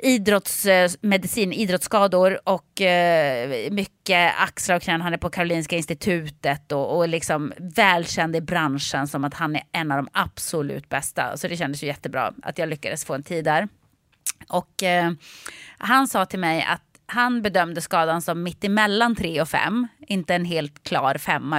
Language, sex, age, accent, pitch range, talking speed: English, female, 30-49, Swedish, 160-195 Hz, 160 wpm